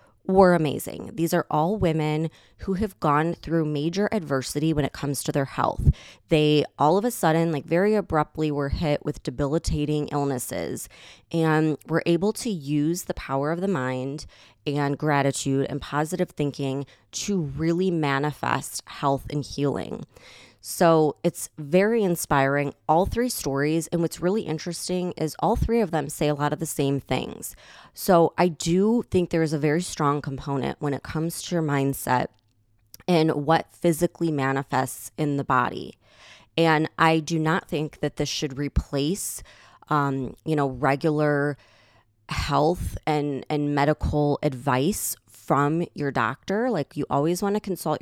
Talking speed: 155 wpm